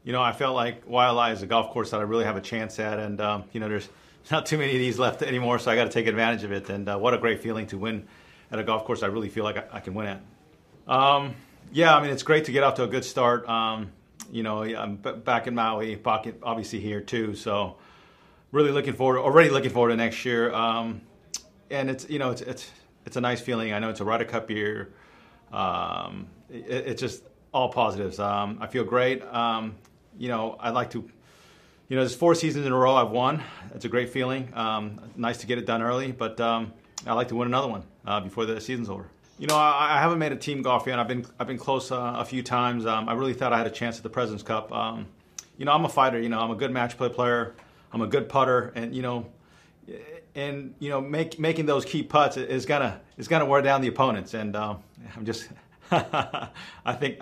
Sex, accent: male, American